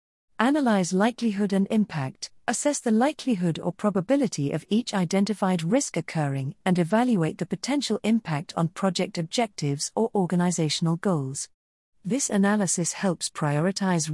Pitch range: 155-220 Hz